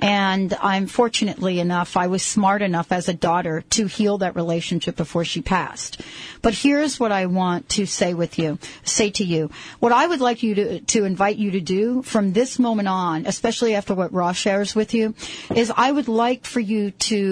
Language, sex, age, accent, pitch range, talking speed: English, female, 40-59, American, 195-245 Hz, 205 wpm